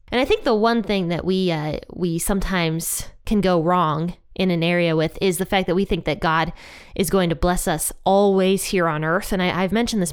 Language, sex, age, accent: English, female, 20-39, American